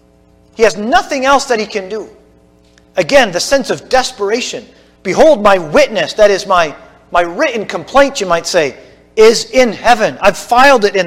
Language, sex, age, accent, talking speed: English, male, 40-59, American, 175 wpm